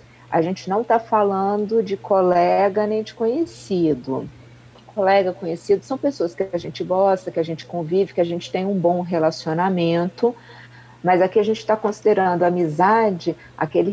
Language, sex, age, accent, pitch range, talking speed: Portuguese, female, 40-59, Brazilian, 170-215 Hz, 165 wpm